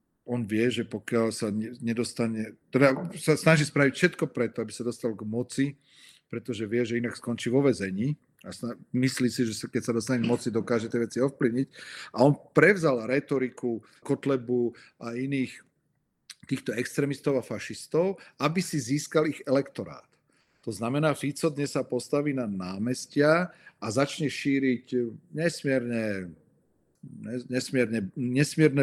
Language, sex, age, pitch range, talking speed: Czech, male, 40-59, 120-150 Hz, 135 wpm